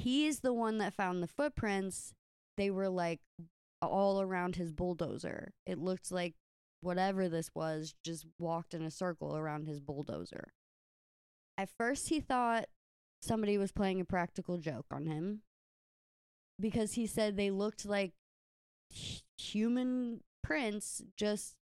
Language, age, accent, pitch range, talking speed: English, 20-39, American, 165-220 Hz, 135 wpm